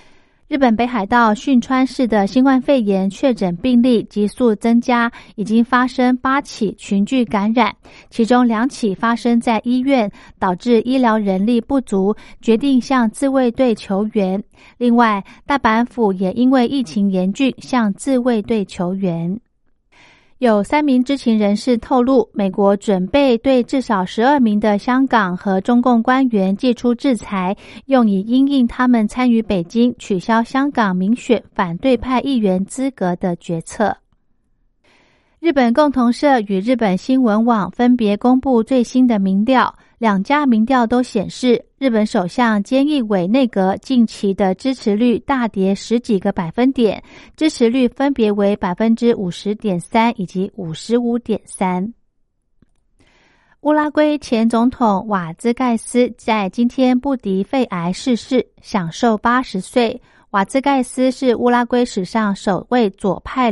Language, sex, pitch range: Chinese, female, 205-250 Hz